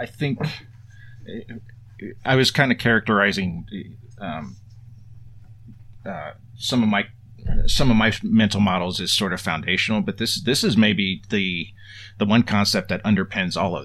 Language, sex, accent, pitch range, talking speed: English, male, American, 95-110 Hz, 145 wpm